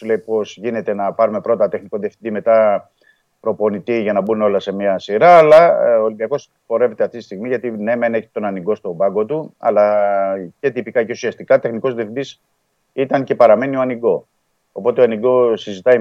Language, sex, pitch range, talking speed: Greek, male, 105-165 Hz, 185 wpm